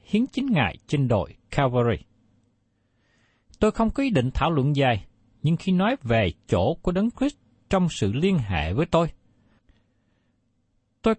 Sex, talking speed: male, 155 wpm